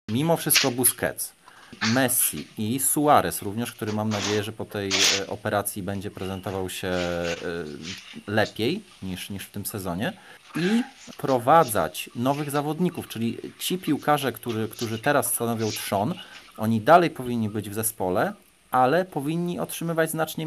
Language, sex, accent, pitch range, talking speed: Polish, male, native, 105-140 Hz, 130 wpm